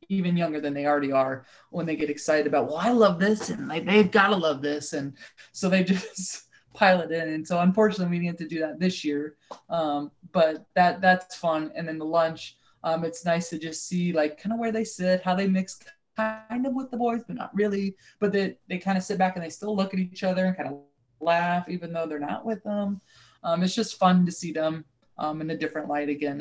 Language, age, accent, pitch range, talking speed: English, 20-39, American, 155-190 Hz, 250 wpm